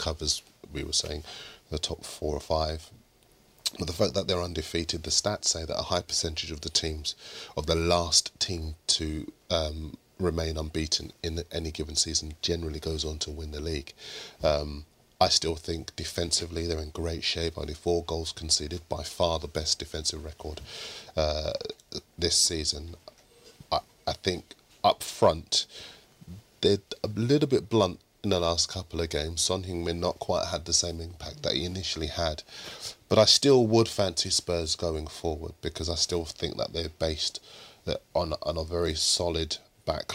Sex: male